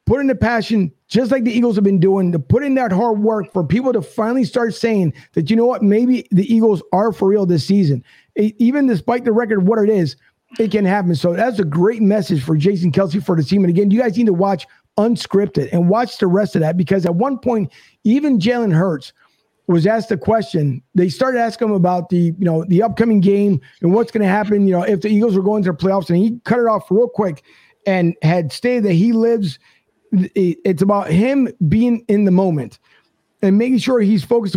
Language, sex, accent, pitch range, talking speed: English, male, American, 180-230 Hz, 235 wpm